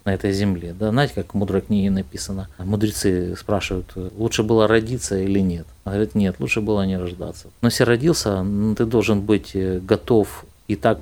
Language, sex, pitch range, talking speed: Ukrainian, male, 95-120 Hz, 180 wpm